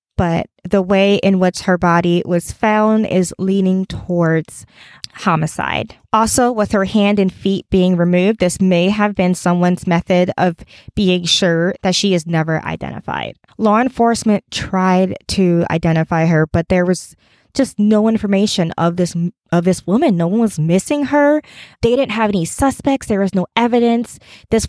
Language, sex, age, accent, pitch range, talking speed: English, female, 20-39, American, 170-215 Hz, 165 wpm